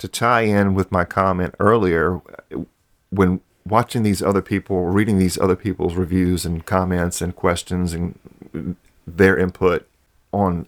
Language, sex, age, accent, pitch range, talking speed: English, male, 40-59, American, 90-100 Hz, 140 wpm